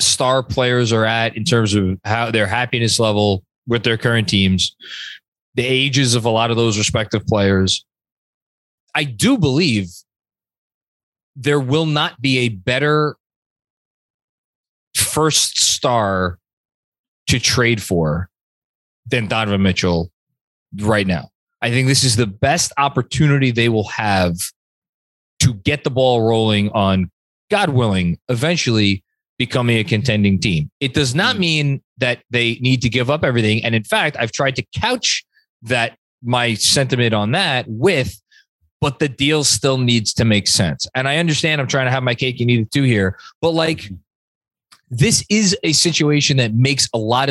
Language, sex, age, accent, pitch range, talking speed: English, male, 20-39, American, 105-135 Hz, 155 wpm